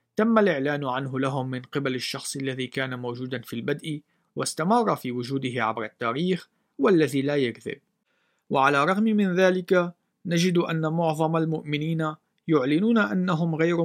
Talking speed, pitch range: 135 wpm, 130-165 Hz